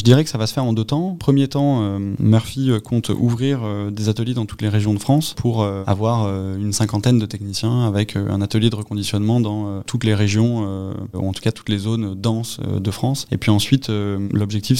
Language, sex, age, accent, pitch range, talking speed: French, male, 20-39, French, 105-120 Hz, 210 wpm